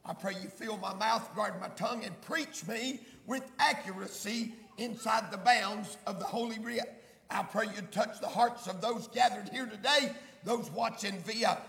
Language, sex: English, male